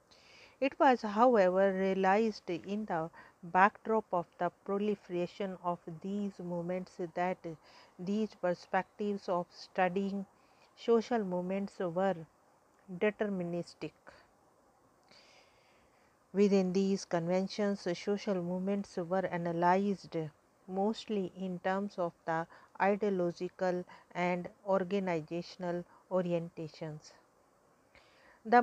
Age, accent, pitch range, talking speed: 50-69, Indian, 180-210 Hz, 80 wpm